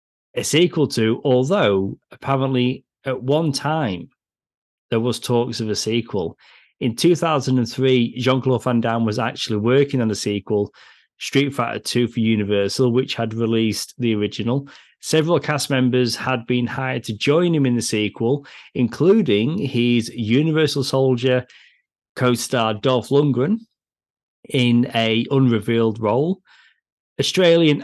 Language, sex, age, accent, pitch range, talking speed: English, male, 30-49, British, 115-140 Hz, 125 wpm